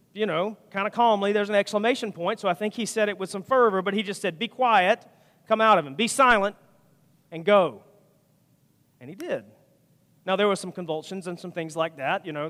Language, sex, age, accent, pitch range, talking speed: English, male, 40-59, American, 150-205 Hz, 225 wpm